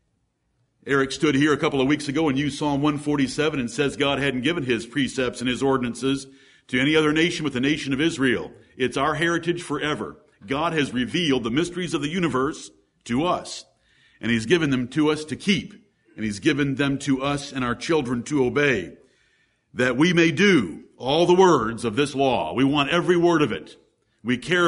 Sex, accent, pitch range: male, American, 135-165 Hz